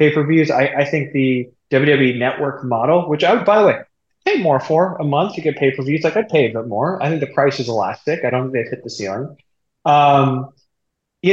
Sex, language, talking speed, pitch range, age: male, English, 250 wpm, 125-150 Hz, 20-39